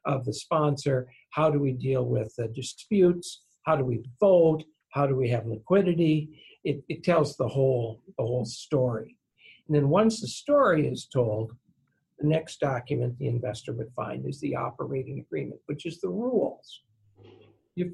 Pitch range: 120-150 Hz